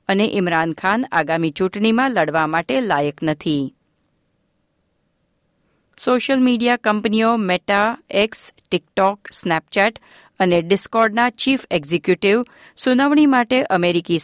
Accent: native